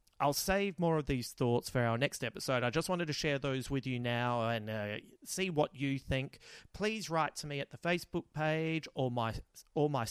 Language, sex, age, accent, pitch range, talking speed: English, male, 30-49, Australian, 115-150 Hz, 220 wpm